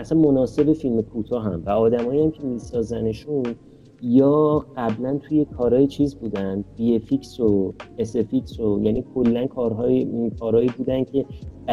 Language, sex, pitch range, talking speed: Persian, male, 105-135 Hz, 140 wpm